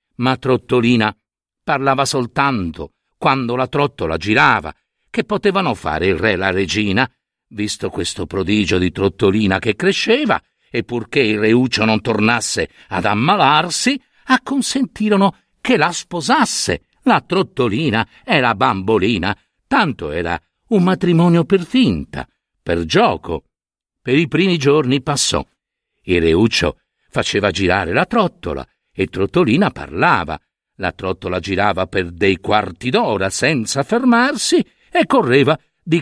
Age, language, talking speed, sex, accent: 50-69, Italian, 125 wpm, male, native